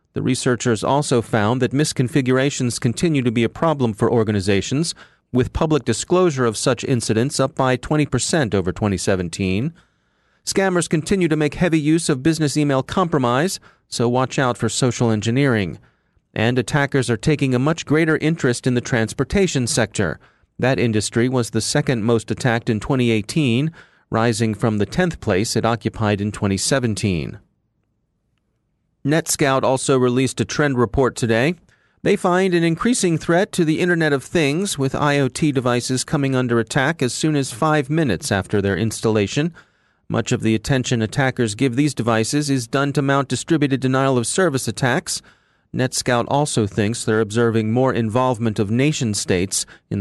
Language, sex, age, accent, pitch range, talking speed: English, male, 30-49, American, 115-150 Hz, 150 wpm